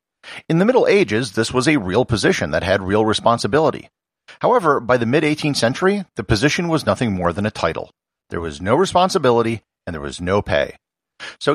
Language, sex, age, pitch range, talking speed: English, male, 50-69, 95-150 Hz, 185 wpm